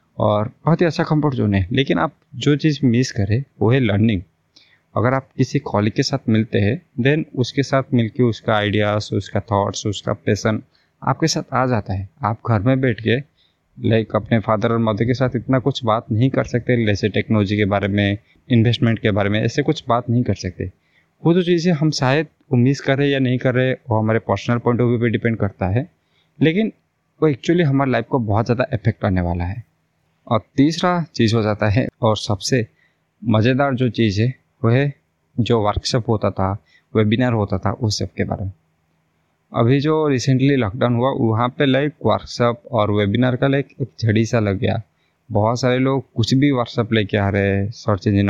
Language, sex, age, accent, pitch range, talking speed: Hindi, male, 20-39, native, 105-130 Hz, 205 wpm